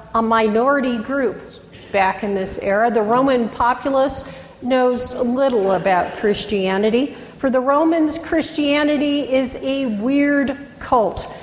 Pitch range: 215-270 Hz